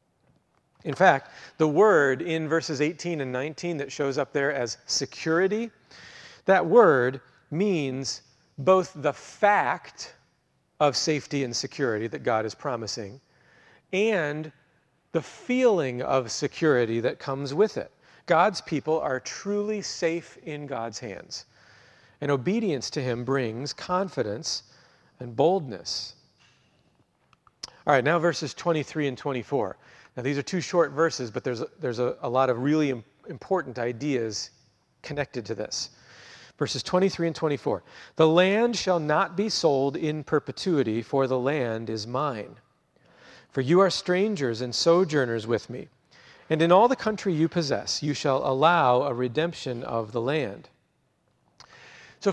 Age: 40-59